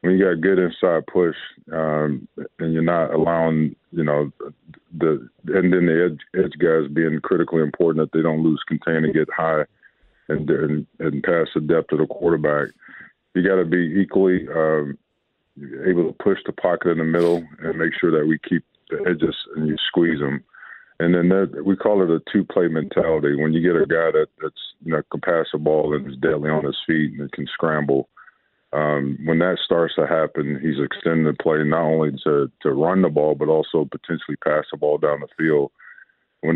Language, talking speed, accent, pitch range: English, 210 wpm, American, 75-85 Hz